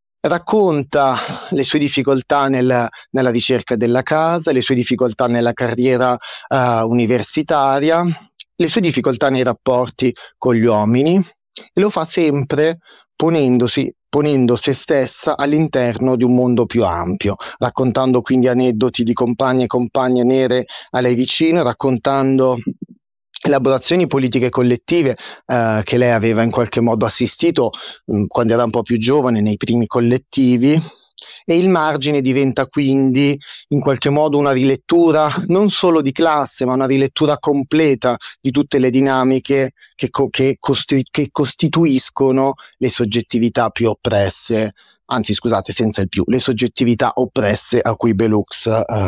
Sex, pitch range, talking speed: male, 120-140 Hz, 130 wpm